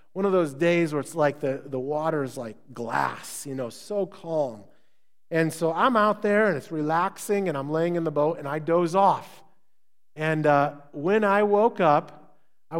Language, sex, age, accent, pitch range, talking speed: English, male, 40-59, American, 150-195 Hz, 195 wpm